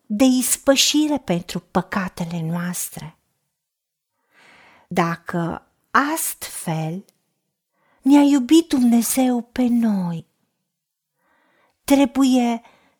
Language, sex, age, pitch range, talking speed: Romanian, female, 40-59, 180-280 Hz, 60 wpm